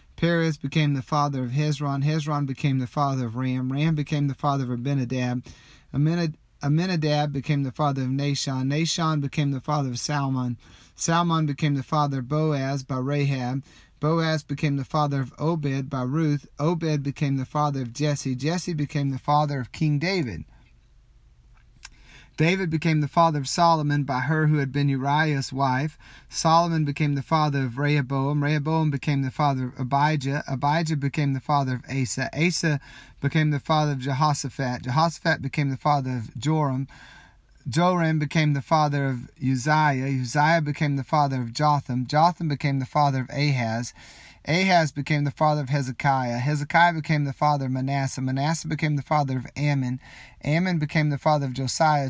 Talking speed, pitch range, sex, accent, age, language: 165 wpm, 135-155 Hz, male, American, 30-49, English